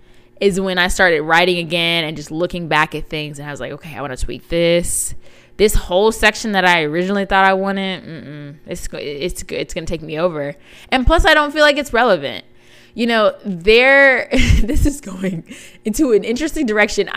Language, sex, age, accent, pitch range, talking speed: English, female, 20-39, American, 150-200 Hz, 205 wpm